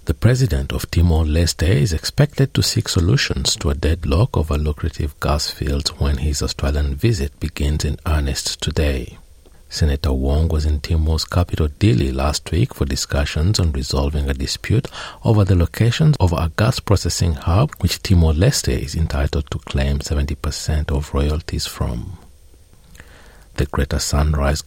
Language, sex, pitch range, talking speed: English, male, 70-95 Hz, 145 wpm